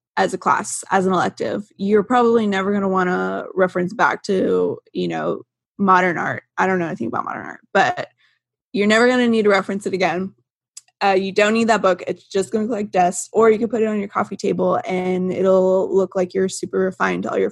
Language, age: English, 20-39